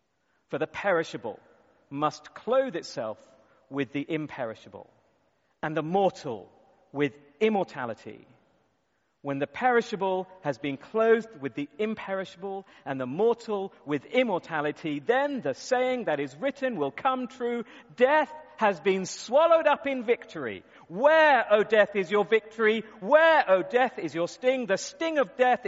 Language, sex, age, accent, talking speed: English, male, 40-59, British, 140 wpm